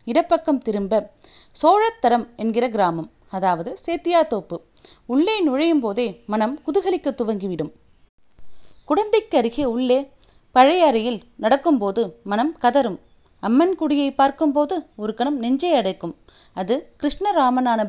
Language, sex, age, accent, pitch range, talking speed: Tamil, female, 30-49, native, 215-300 Hz, 100 wpm